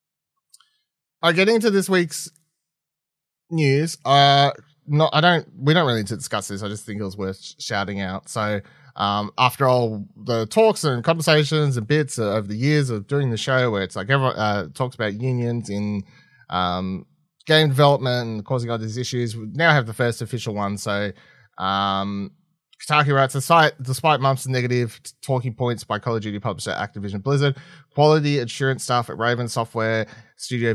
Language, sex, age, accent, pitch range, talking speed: English, male, 20-39, Australian, 105-145 Hz, 185 wpm